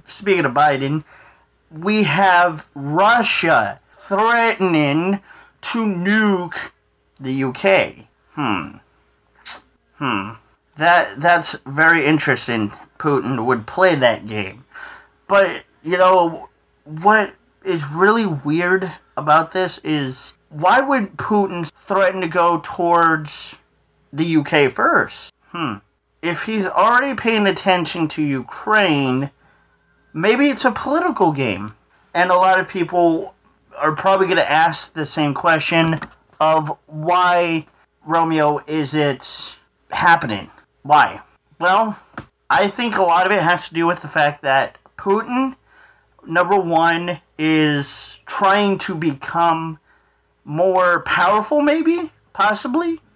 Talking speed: 110 wpm